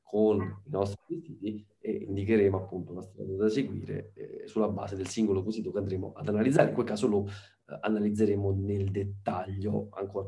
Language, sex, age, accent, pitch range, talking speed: Italian, male, 30-49, native, 95-110 Hz, 175 wpm